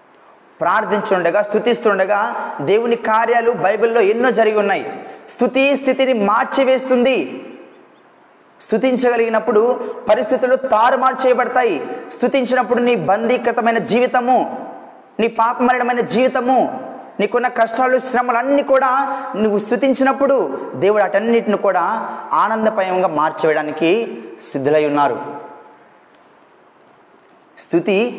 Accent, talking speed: native, 75 wpm